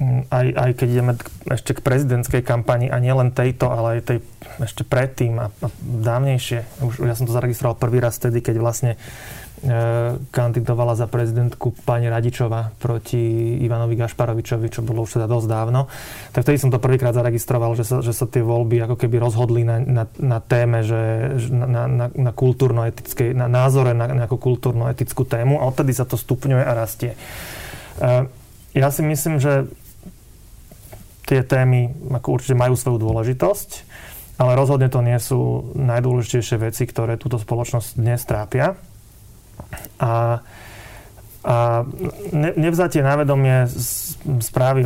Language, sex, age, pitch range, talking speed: Slovak, male, 30-49, 115-130 Hz, 150 wpm